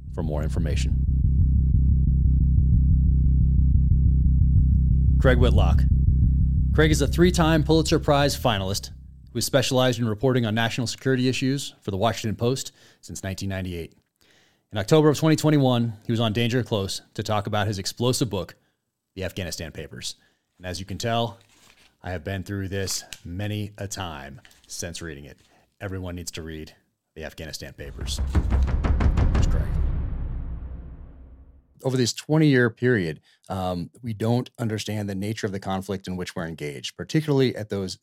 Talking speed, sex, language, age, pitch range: 140 wpm, male, English, 30-49, 80-115 Hz